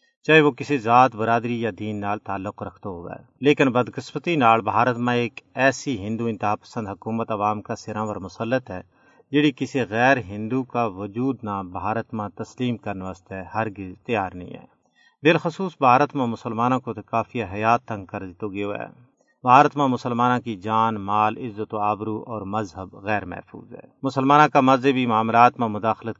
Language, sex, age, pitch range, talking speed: Urdu, male, 40-59, 105-130 Hz, 175 wpm